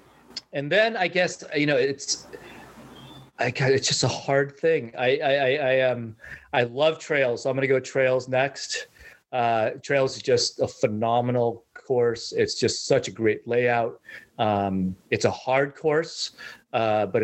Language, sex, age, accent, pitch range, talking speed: English, male, 30-49, American, 120-150 Hz, 170 wpm